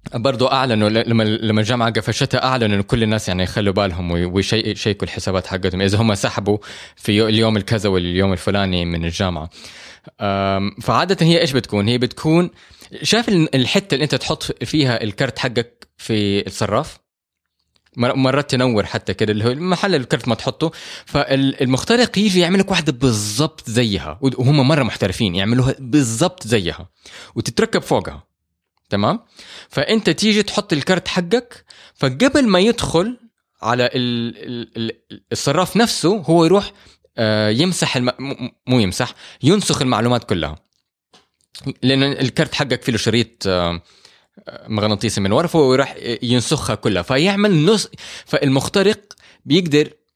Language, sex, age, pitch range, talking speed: Arabic, male, 20-39, 110-160 Hz, 120 wpm